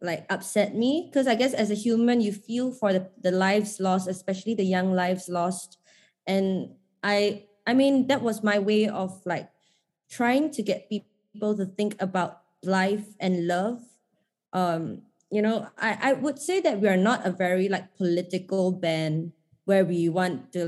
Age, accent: 20-39, Malaysian